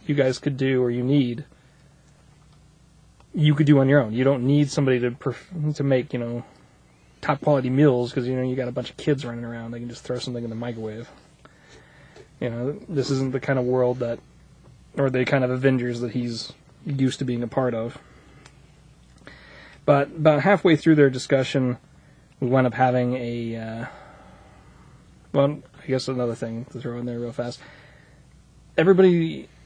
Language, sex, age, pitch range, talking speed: English, male, 20-39, 125-155 Hz, 185 wpm